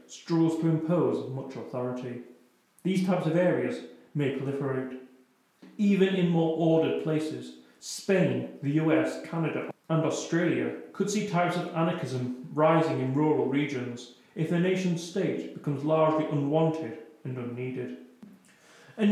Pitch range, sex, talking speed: 135-180 Hz, male, 130 wpm